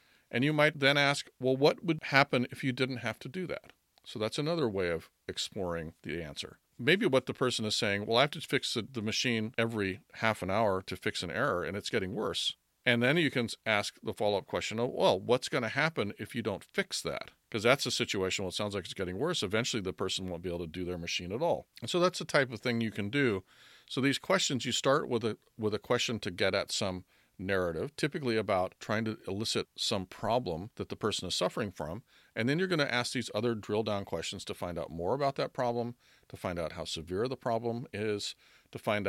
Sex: male